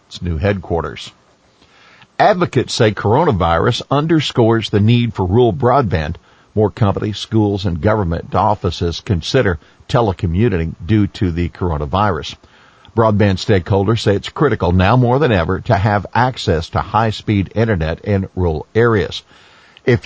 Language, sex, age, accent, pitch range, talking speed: English, male, 50-69, American, 90-115 Hz, 125 wpm